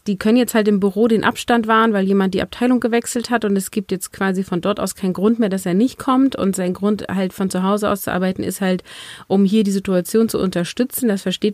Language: German